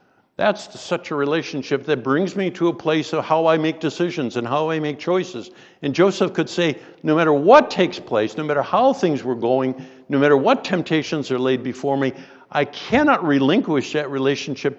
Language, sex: English, male